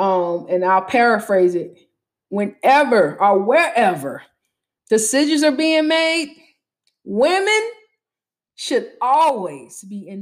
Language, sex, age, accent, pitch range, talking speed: English, female, 20-39, American, 190-245 Hz, 100 wpm